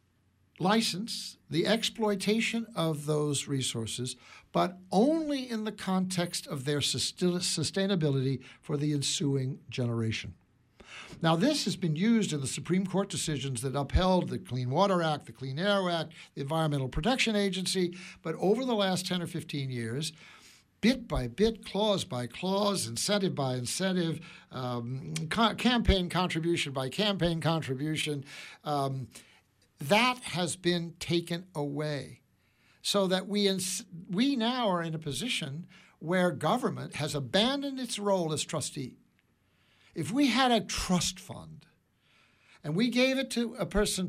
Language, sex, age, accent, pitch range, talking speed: English, male, 60-79, American, 145-205 Hz, 140 wpm